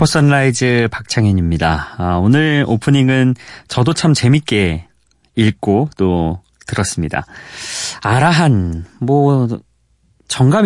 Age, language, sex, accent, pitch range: 30-49, Korean, male, native, 100-150 Hz